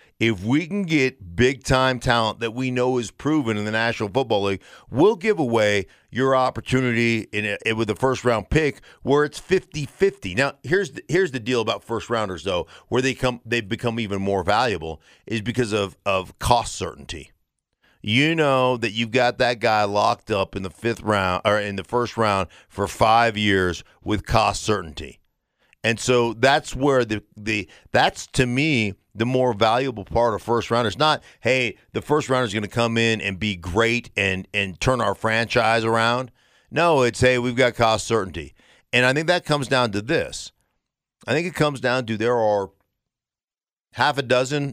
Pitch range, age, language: 105-130 Hz, 50-69, English